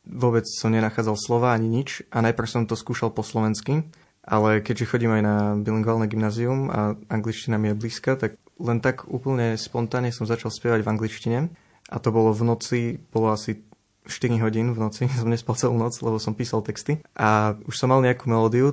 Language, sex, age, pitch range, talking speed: Slovak, male, 20-39, 110-120 Hz, 190 wpm